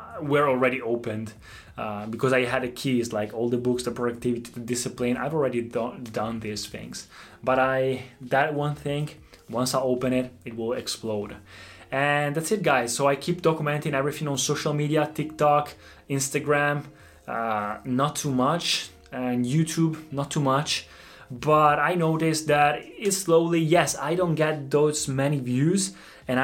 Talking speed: 160 wpm